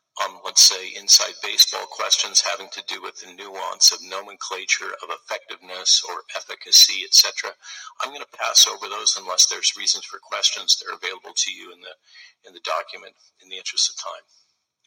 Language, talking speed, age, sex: English, 190 wpm, 50-69, male